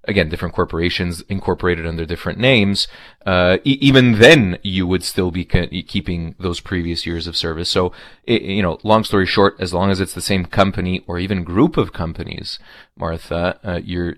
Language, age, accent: English, 30-49, Canadian